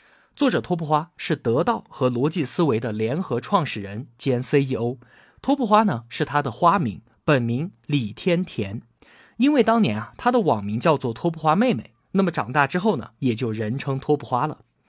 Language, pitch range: Chinese, 125-190 Hz